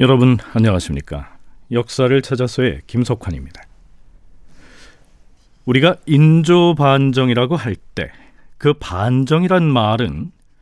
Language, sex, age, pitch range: Korean, male, 40-59, 105-150 Hz